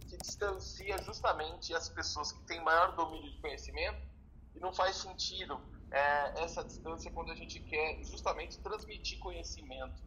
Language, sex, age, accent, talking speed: Portuguese, male, 20-39, Brazilian, 135 wpm